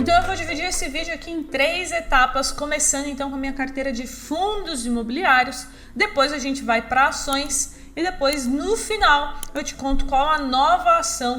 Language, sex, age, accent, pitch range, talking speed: Portuguese, female, 20-39, Brazilian, 240-305 Hz, 190 wpm